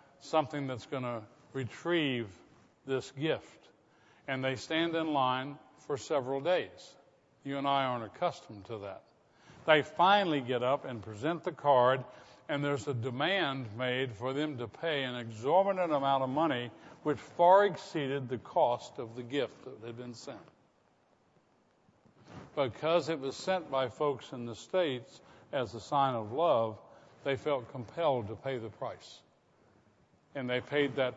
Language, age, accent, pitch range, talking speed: English, 60-79, American, 120-150 Hz, 155 wpm